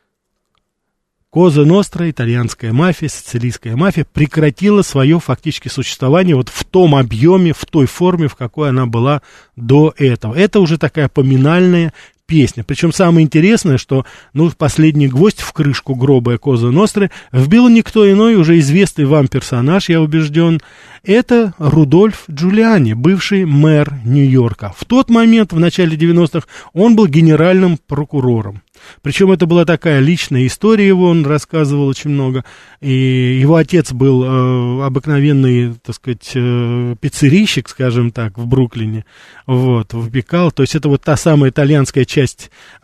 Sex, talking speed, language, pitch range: male, 140 wpm, Russian, 130-170 Hz